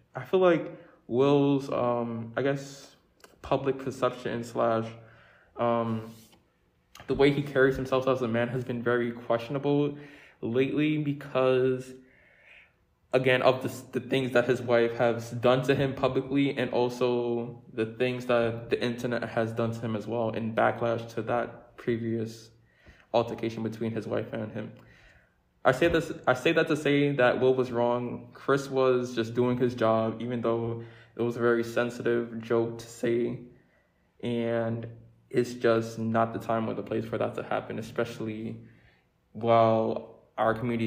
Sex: male